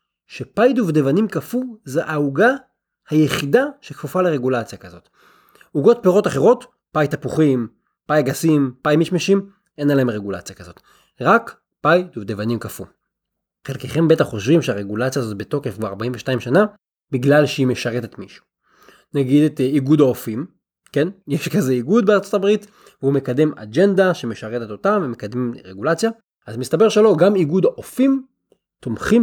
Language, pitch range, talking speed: Hebrew, 120-180 Hz, 130 wpm